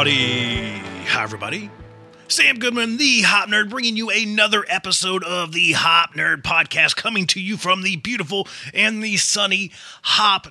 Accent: American